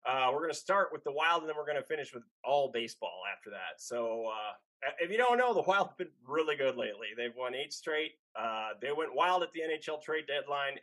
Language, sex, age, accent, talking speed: English, male, 20-39, American, 250 wpm